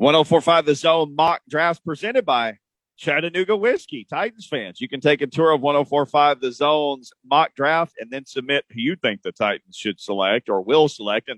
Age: 40-59